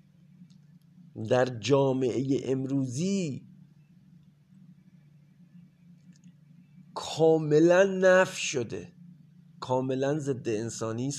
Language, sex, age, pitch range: Persian, male, 50-69, 155-175 Hz